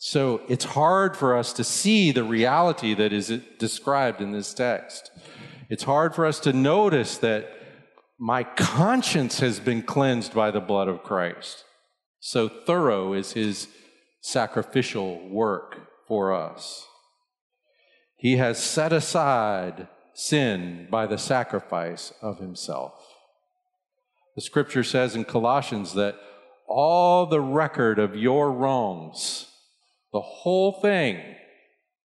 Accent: American